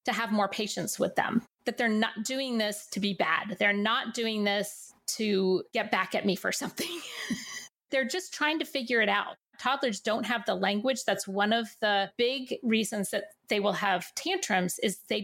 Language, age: English, 30-49